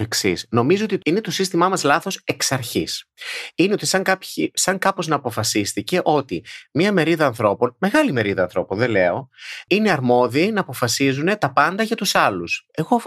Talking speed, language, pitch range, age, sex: 165 wpm, Greek, 105-175 Hz, 30-49, male